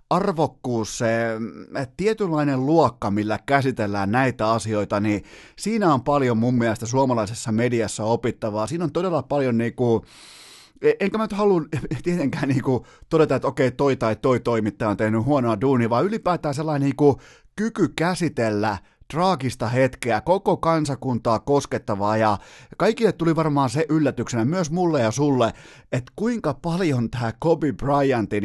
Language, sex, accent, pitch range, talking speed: Finnish, male, native, 115-160 Hz, 140 wpm